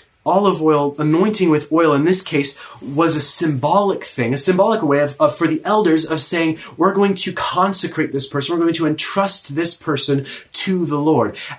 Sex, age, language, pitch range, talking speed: male, 30-49, English, 125-170 Hz, 190 wpm